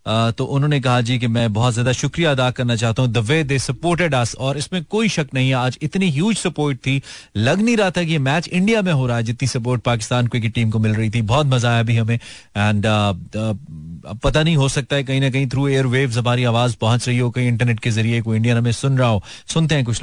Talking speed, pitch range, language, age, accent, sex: 250 wpm, 115-145 Hz, Hindi, 30-49, native, male